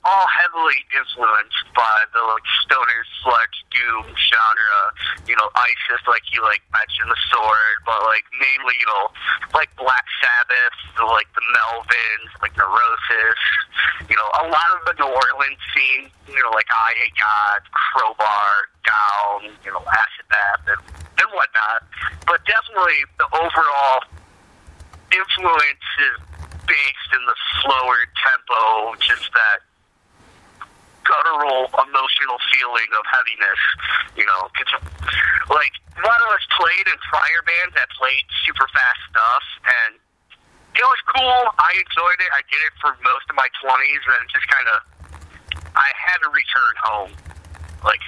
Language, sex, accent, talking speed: English, male, American, 145 wpm